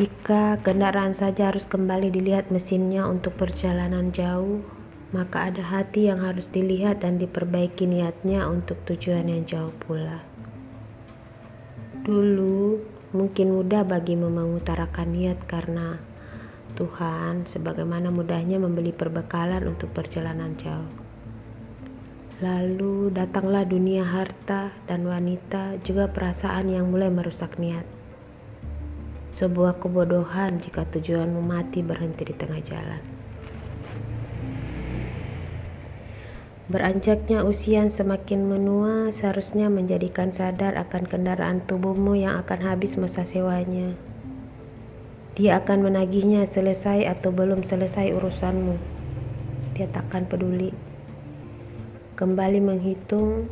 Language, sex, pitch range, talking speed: Indonesian, female, 125-195 Hz, 100 wpm